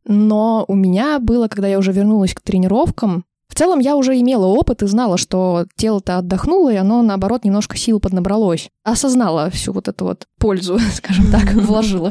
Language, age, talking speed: Russian, 20-39, 180 wpm